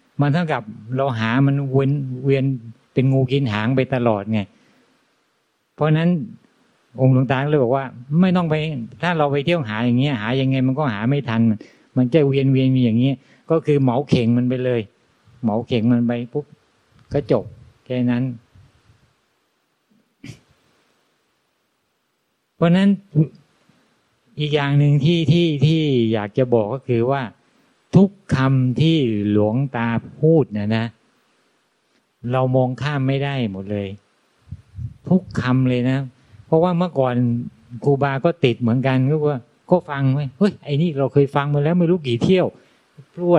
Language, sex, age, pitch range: Thai, male, 60-79, 120-145 Hz